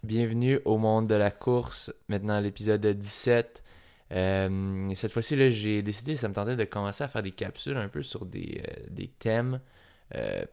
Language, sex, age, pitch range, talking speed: French, male, 20-39, 95-115 Hz, 180 wpm